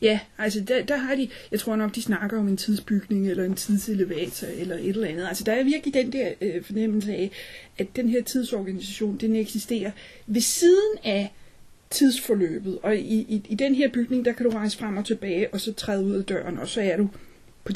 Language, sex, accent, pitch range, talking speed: Danish, female, native, 200-255 Hz, 220 wpm